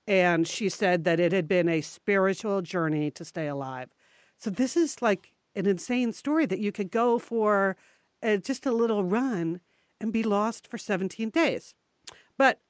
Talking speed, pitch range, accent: 170 wpm, 175-230 Hz, American